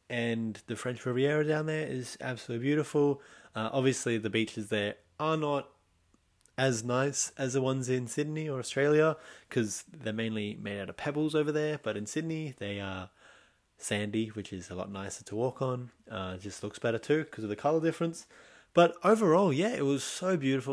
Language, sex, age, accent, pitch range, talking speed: English, male, 20-39, Australian, 110-145 Hz, 190 wpm